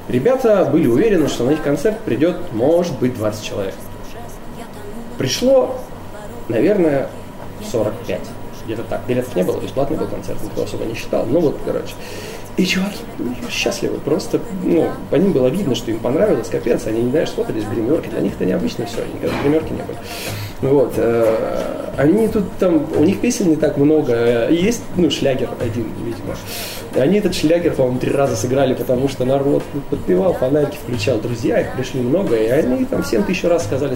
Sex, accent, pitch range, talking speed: male, native, 105-155 Hz, 170 wpm